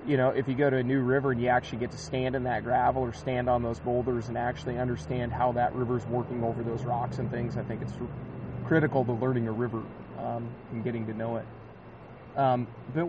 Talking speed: 240 wpm